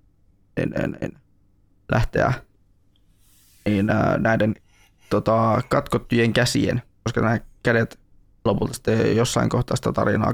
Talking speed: 100 wpm